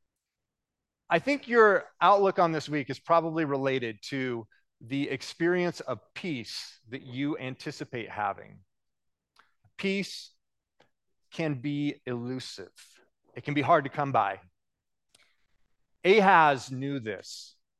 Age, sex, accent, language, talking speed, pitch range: 30-49, male, American, English, 110 wpm, 130-165 Hz